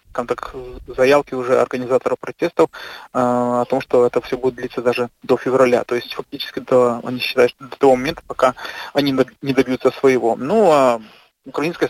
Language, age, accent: Russian, 20-39, native